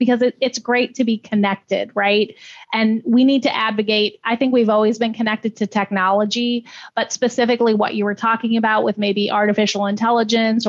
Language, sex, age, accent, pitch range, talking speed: English, female, 30-49, American, 205-235 Hz, 175 wpm